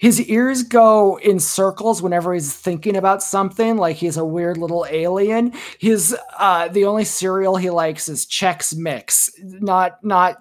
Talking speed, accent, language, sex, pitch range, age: 160 wpm, American, English, male, 165-215 Hz, 30-49